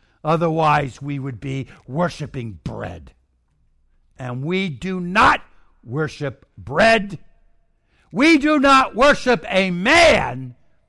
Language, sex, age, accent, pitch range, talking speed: English, male, 60-79, American, 105-175 Hz, 100 wpm